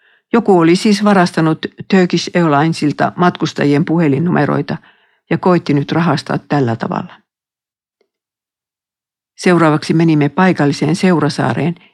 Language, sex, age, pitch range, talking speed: Finnish, female, 50-69, 155-185 Hz, 85 wpm